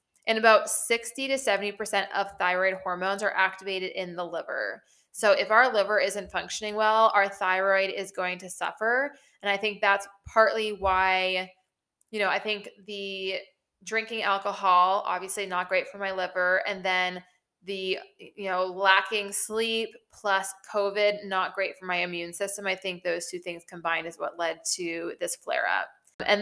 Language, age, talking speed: English, 20-39, 170 wpm